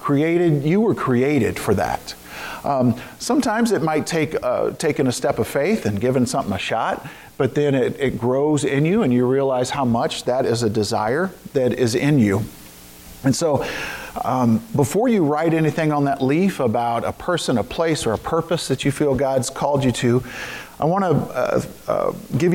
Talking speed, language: 195 wpm, English